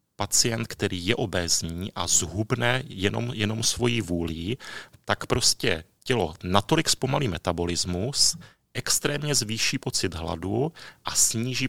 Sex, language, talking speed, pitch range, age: male, Czech, 115 wpm, 95-115 Hz, 40-59